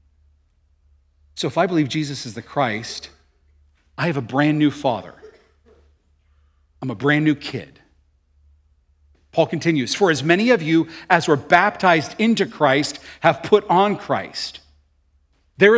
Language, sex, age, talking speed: English, male, 40-59, 135 wpm